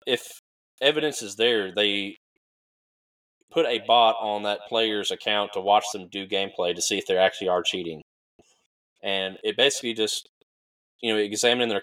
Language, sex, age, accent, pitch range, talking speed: English, male, 20-39, American, 90-110 Hz, 160 wpm